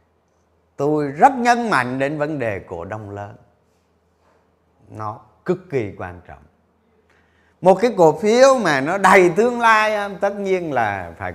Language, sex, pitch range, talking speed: Vietnamese, male, 90-140 Hz, 150 wpm